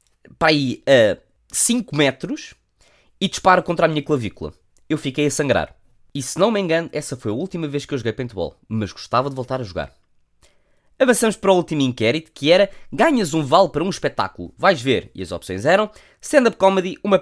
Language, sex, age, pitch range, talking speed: Portuguese, male, 20-39, 130-215 Hz, 195 wpm